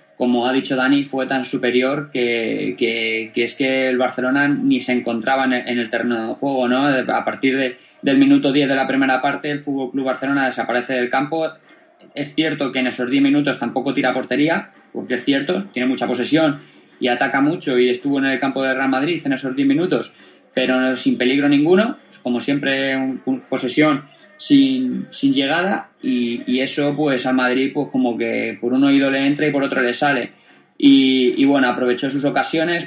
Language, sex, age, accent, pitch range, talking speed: Spanish, male, 20-39, Spanish, 125-145 Hz, 200 wpm